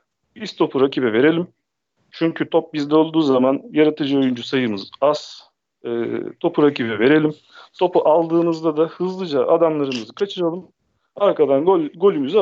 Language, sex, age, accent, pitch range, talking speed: Turkish, male, 40-59, native, 145-195 Hz, 120 wpm